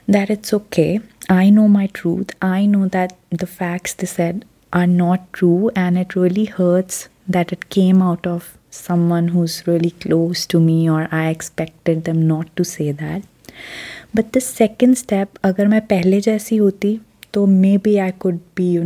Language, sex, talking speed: Hindi, female, 180 wpm